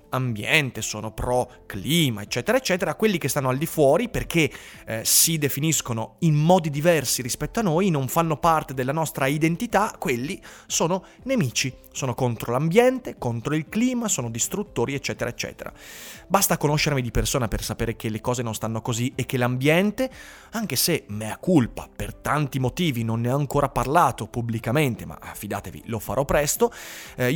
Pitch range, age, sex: 115-165 Hz, 30-49, male